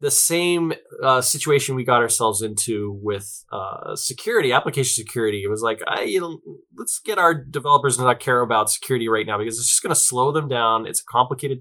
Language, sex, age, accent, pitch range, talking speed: English, male, 20-39, American, 110-140 Hz, 205 wpm